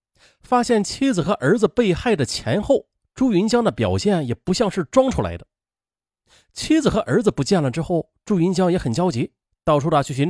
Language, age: Chinese, 30-49